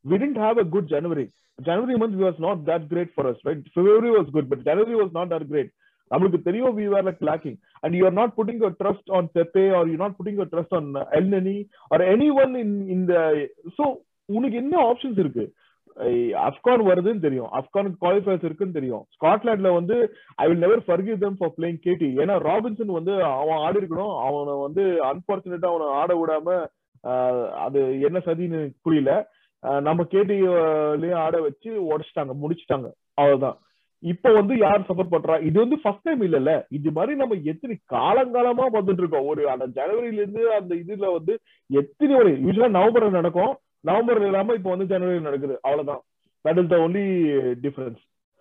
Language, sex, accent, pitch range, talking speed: Tamil, male, native, 160-210 Hz, 150 wpm